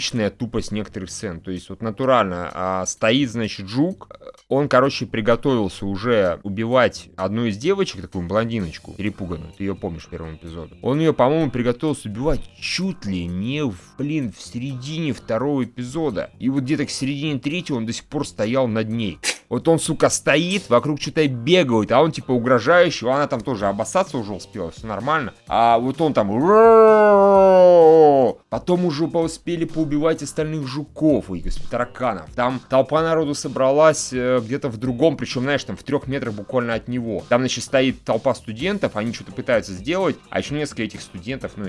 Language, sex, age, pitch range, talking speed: Russian, male, 30-49, 105-150 Hz, 170 wpm